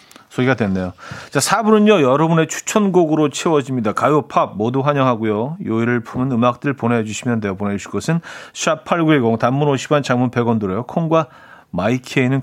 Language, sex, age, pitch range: Korean, male, 40-59, 120-170 Hz